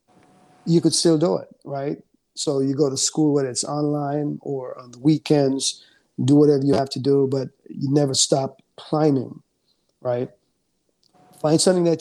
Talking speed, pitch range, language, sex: 165 wpm, 130-150 Hz, English, male